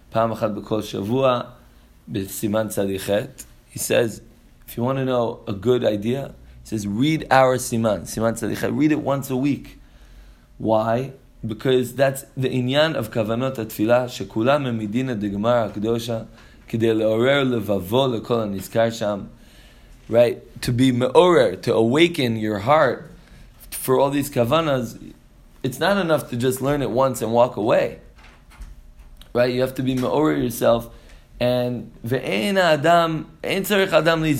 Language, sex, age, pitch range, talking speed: English, male, 20-39, 110-135 Hz, 115 wpm